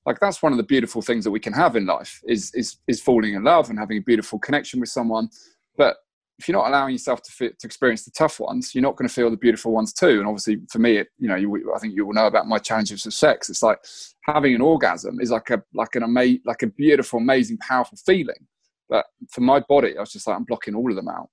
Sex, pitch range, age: male, 110-140 Hz, 20-39